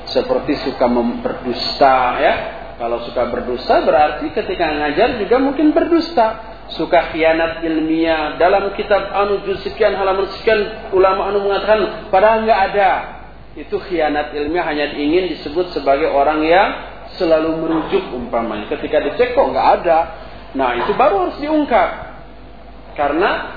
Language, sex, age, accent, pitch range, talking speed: Indonesian, male, 40-59, native, 150-215 Hz, 130 wpm